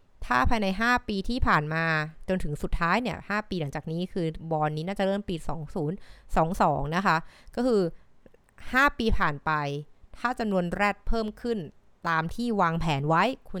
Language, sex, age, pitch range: Thai, female, 20-39, 165-205 Hz